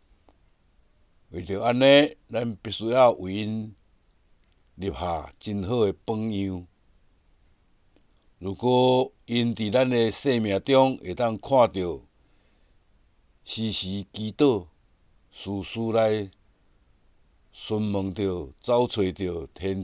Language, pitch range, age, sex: Chinese, 90-110 Hz, 60-79, male